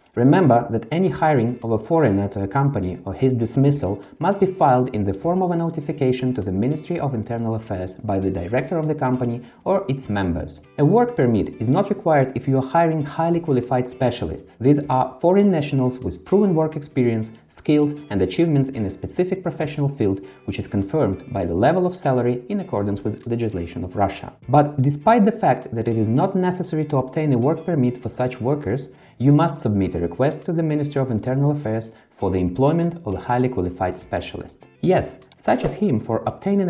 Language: Russian